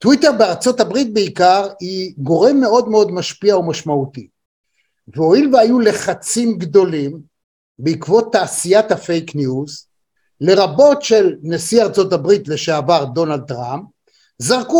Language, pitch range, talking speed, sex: Hebrew, 165-245 Hz, 110 wpm, male